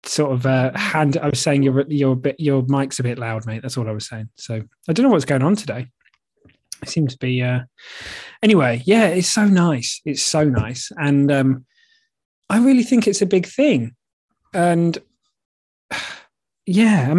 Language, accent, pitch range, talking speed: English, British, 125-170 Hz, 190 wpm